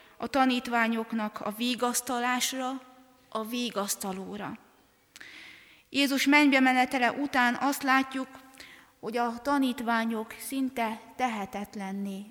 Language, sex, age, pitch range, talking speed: Hungarian, female, 30-49, 225-265 Hz, 85 wpm